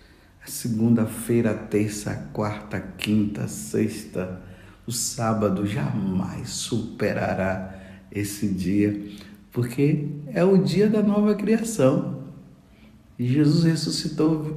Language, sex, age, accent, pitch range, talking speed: Portuguese, male, 50-69, Brazilian, 100-135 Hz, 80 wpm